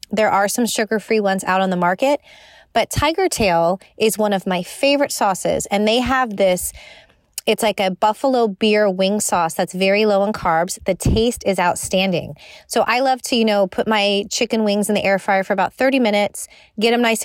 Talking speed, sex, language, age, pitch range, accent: 205 wpm, female, English, 30-49, 190-230 Hz, American